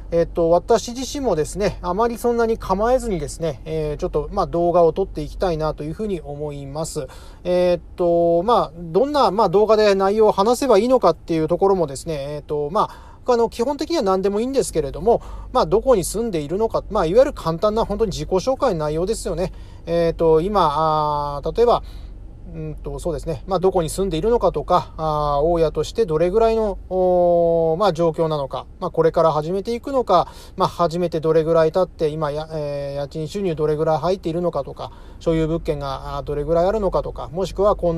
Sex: male